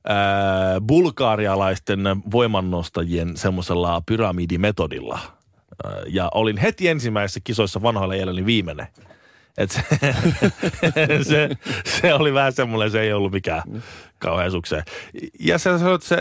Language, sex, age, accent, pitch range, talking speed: Finnish, male, 30-49, native, 95-125 Hz, 85 wpm